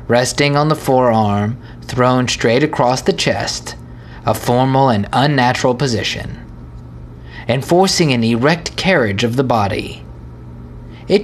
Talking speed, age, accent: 115 wpm, 30-49, American